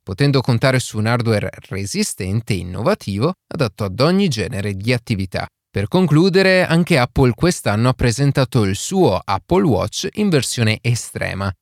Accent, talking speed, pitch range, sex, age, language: native, 145 wpm, 105-150 Hz, male, 30-49, Italian